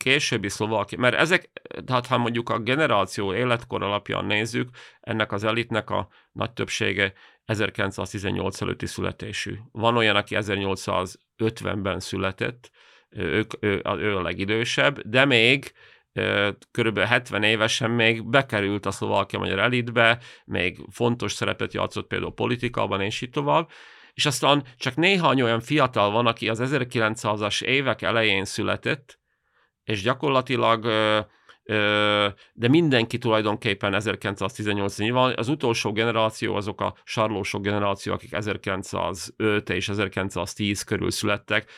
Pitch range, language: 100-120 Hz, Hungarian